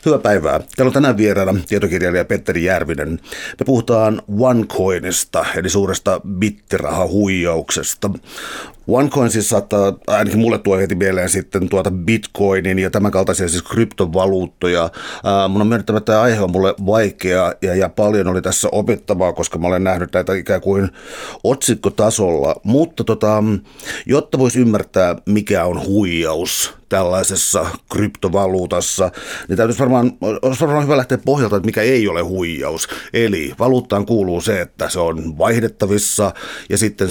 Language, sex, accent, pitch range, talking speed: Finnish, male, native, 95-110 Hz, 140 wpm